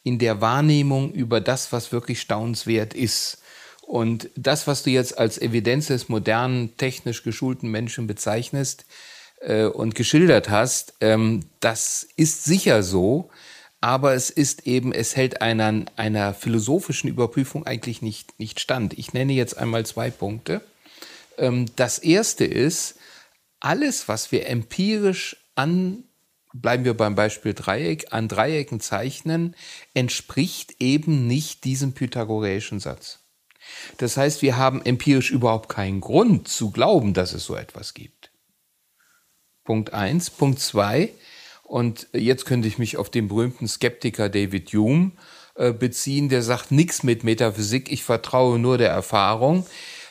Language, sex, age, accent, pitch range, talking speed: German, male, 40-59, German, 110-140 Hz, 140 wpm